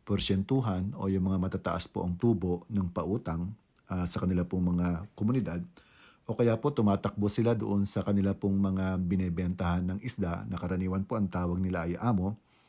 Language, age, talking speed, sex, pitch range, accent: English, 50-69, 175 wpm, male, 90-105 Hz, Filipino